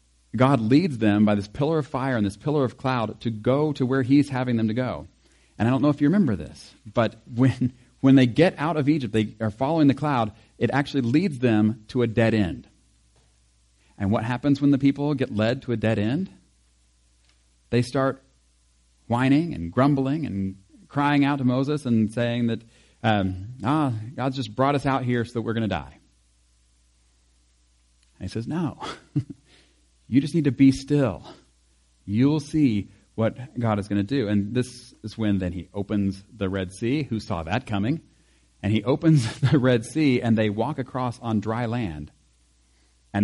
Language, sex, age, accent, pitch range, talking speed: English, male, 40-59, American, 90-130 Hz, 190 wpm